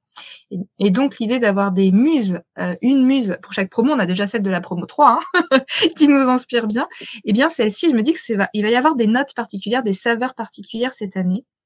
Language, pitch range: French, 200-255 Hz